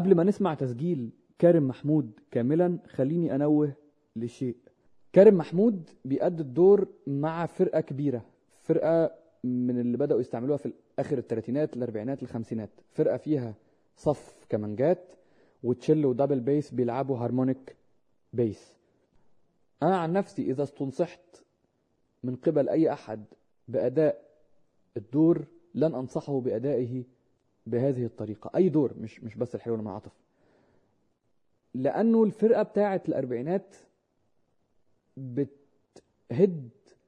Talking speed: 105 wpm